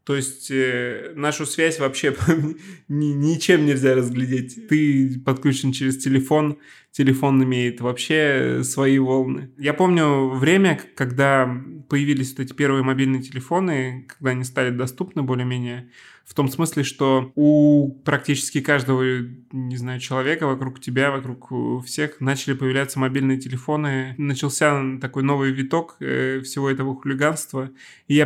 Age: 20-39